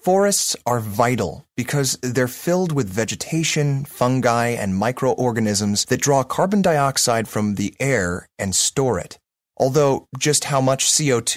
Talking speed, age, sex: 135 wpm, 30-49, male